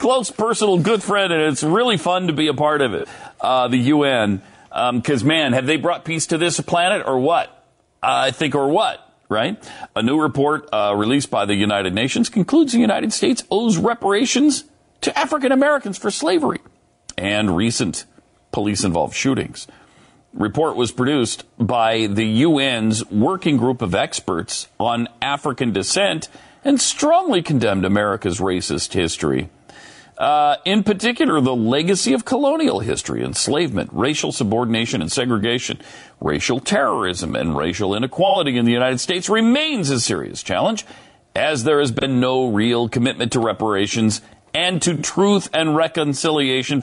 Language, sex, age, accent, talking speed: English, male, 40-59, American, 150 wpm